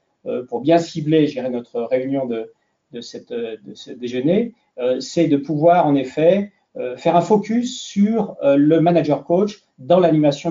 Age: 40-59